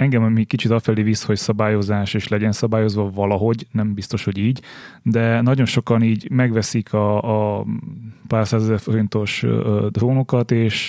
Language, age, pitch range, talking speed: Hungarian, 30-49, 105-115 Hz, 150 wpm